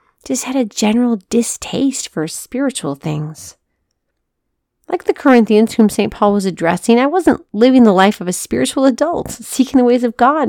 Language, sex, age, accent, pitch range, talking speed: English, female, 40-59, American, 195-265 Hz, 170 wpm